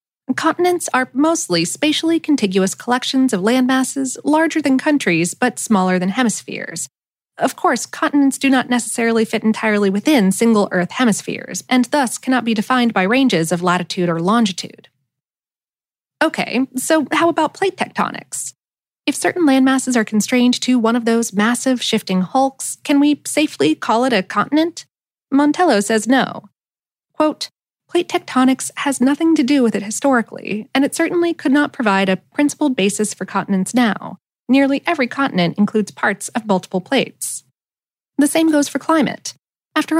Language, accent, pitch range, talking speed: English, American, 210-290 Hz, 155 wpm